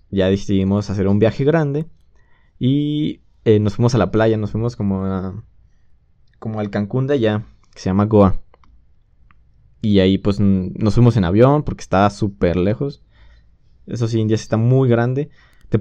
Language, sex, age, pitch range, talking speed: Spanish, male, 20-39, 100-120 Hz, 165 wpm